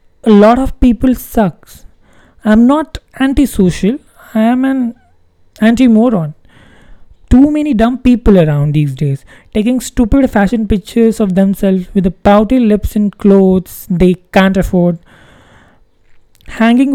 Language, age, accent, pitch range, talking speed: English, 20-39, Indian, 185-245 Hz, 125 wpm